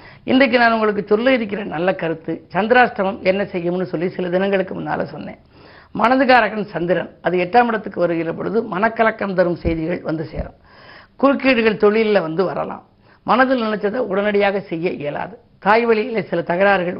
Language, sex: Tamil, female